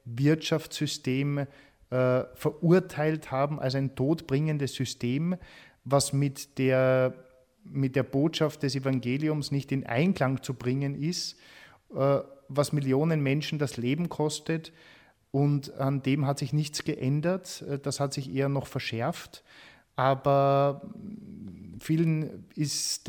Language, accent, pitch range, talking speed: German, German, 135-160 Hz, 115 wpm